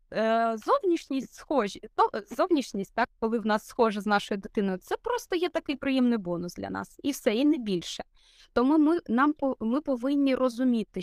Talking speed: 165 wpm